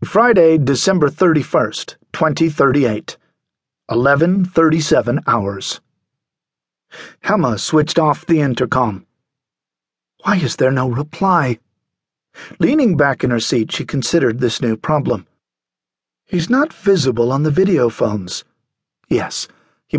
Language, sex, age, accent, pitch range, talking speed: English, male, 50-69, American, 115-160 Hz, 105 wpm